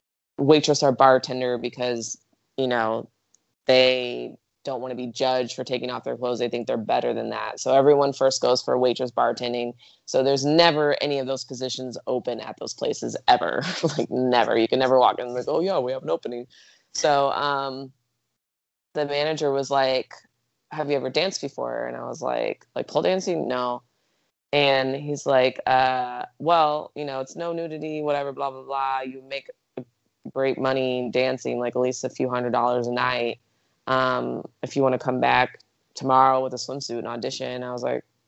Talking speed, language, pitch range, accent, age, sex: 185 wpm, English, 125-145 Hz, American, 20-39, female